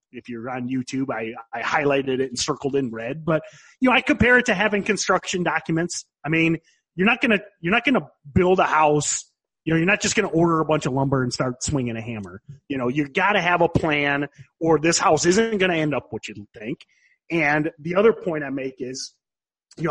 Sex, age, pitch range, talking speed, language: male, 30-49, 140-205 Hz, 225 wpm, English